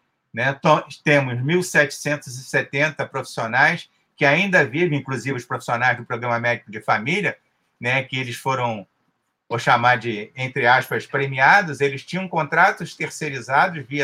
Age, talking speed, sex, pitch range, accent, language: 50-69, 130 wpm, male, 130-160 Hz, Brazilian, Portuguese